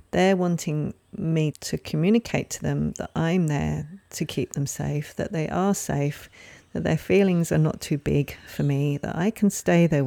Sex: female